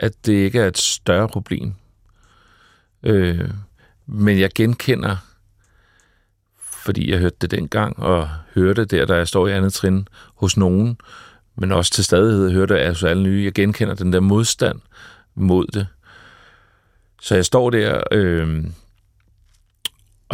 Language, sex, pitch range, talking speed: Danish, male, 90-105 Hz, 150 wpm